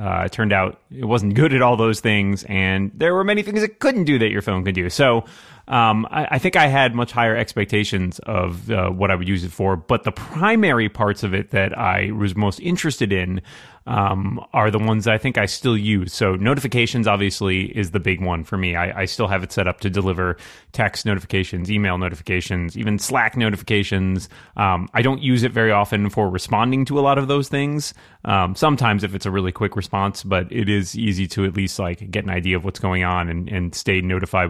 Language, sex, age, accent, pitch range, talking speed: English, male, 30-49, American, 95-115 Hz, 225 wpm